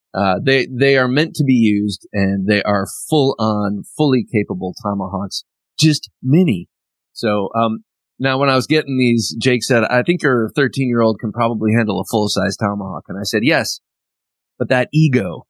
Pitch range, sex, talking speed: 110-140 Hz, male, 185 wpm